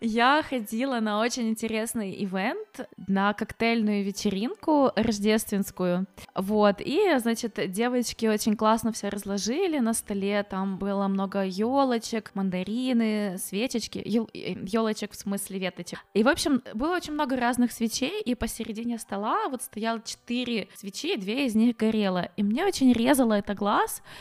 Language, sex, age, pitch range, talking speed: Russian, female, 20-39, 210-260 Hz, 140 wpm